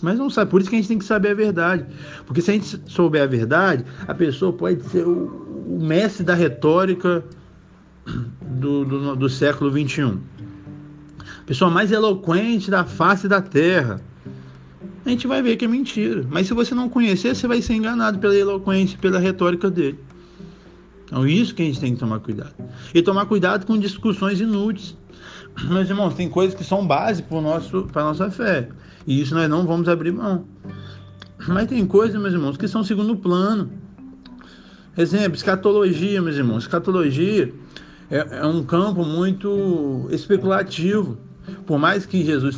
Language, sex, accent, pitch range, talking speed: Portuguese, male, Brazilian, 150-200 Hz, 170 wpm